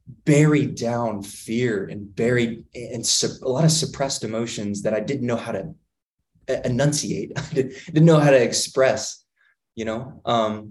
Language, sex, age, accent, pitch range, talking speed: English, male, 20-39, American, 100-115 Hz, 145 wpm